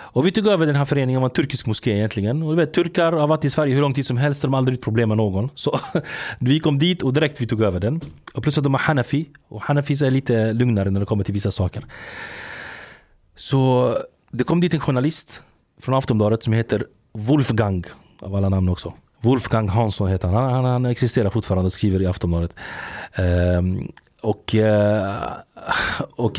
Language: Swedish